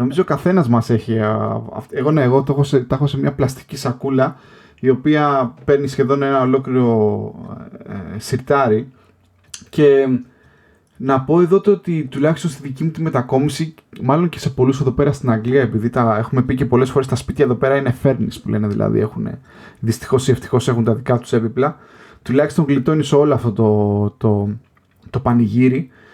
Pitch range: 115-140 Hz